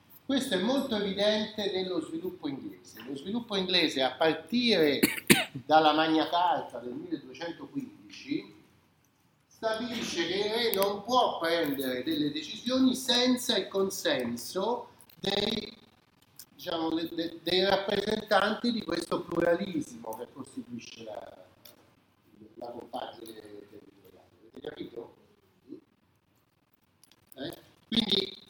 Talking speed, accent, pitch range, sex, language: 90 wpm, native, 165-235 Hz, male, Italian